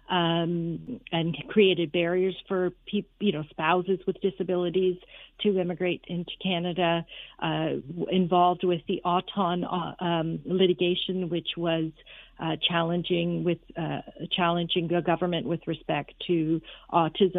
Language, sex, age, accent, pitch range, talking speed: English, female, 50-69, American, 170-195 Hz, 125 wpm